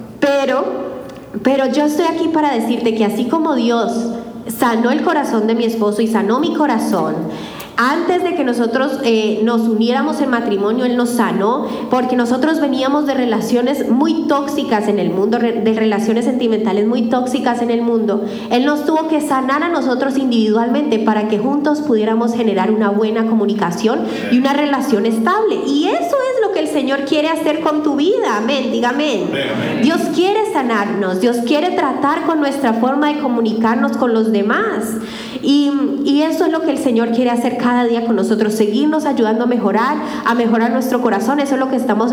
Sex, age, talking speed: female, 30-49, 175 wpm